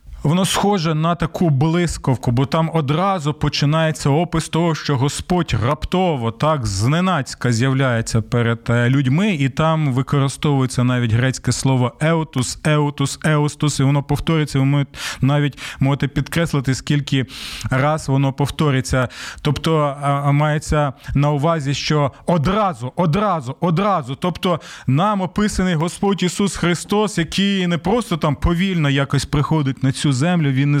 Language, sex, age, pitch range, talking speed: Ukrainian, male, 20-39, 135-180 Hz, 125 wpm